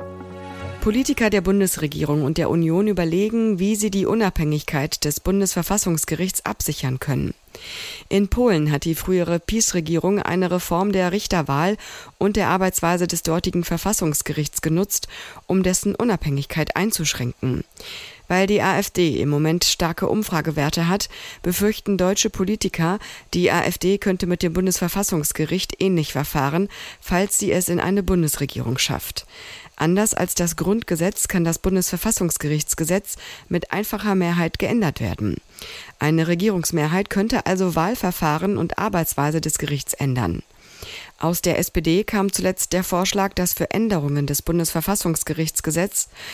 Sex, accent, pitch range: female, German, 155-195 Hz